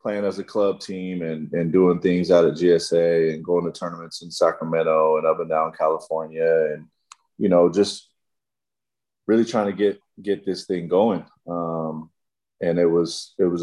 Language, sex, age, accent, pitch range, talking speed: English, male, 20-39, American, 80-100 Hz, 180 wpm